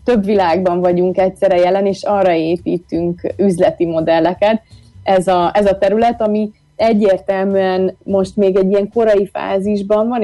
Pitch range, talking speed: 185-205 Hz, 135 wpm